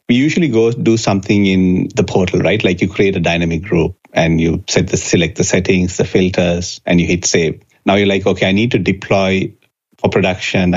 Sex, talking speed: male, 210 wpm